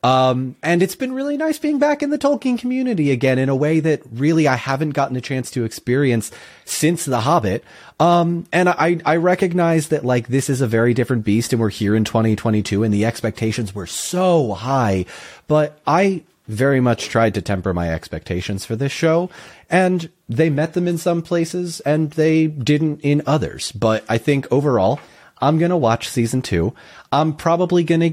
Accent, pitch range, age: American, 110-160 Hz, 30-49